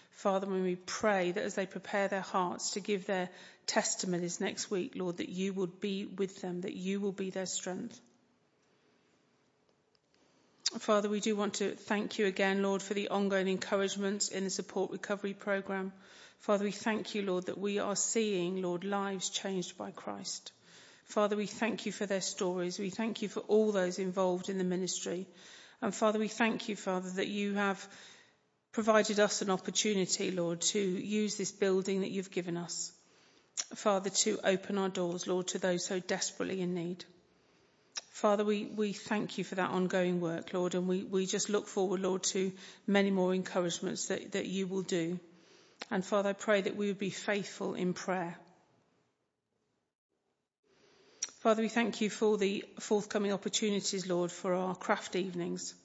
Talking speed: 175 wpm